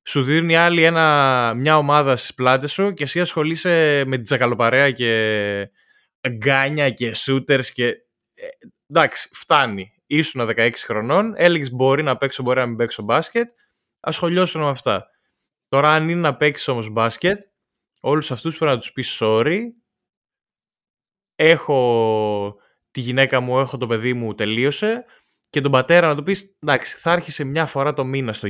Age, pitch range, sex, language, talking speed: 20-39, 125-170 Hz, male, Greek, 155 wpm